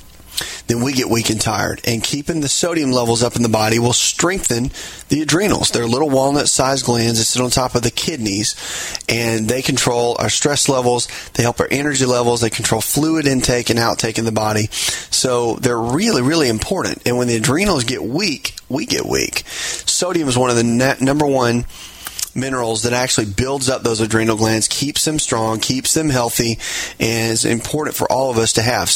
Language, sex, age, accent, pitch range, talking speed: English, male, 30-49, American, 115-135 Hz, 195 wpm